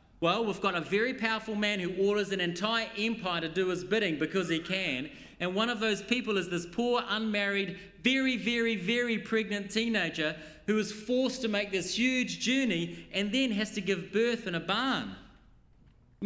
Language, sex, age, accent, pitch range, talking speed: English, male, 30-49, Australian, 195-255 Hz, 190 wpm